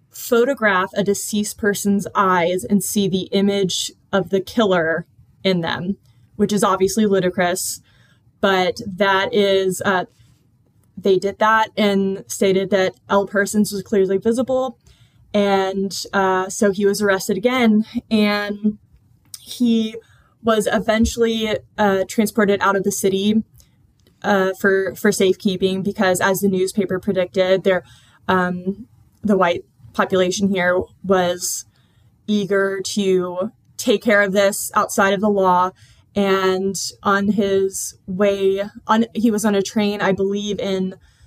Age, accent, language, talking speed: 20-39, American, English, 130 wpm